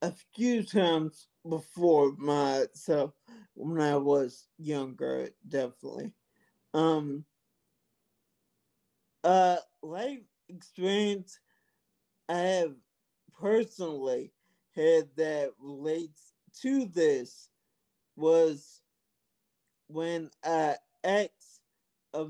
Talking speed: 75 wpm